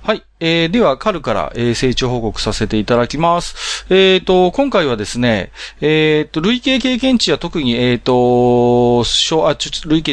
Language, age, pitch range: Japanese, 40-59, 120-185 Hz